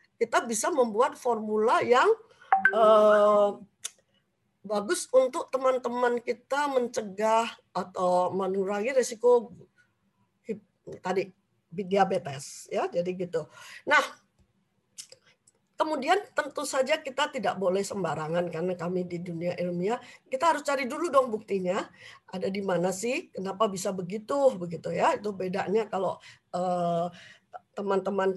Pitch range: 185-260 Hz